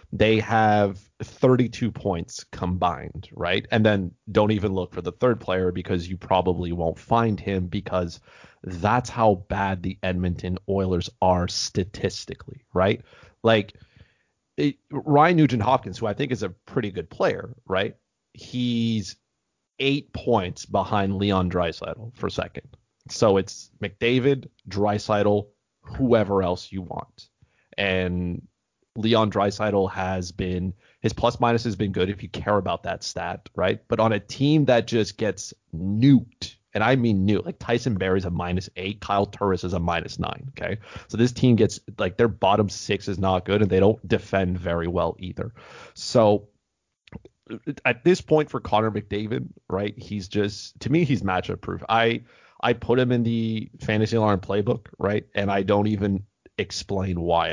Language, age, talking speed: English, 30-49, 160 wpm